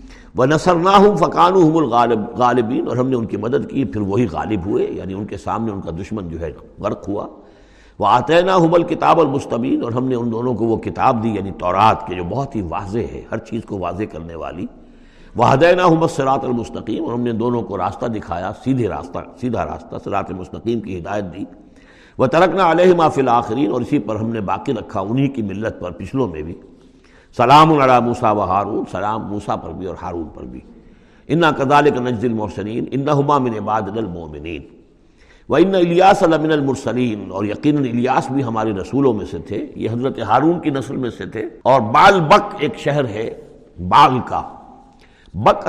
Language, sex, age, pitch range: Urdu, male, 60-79, 100-140 Hz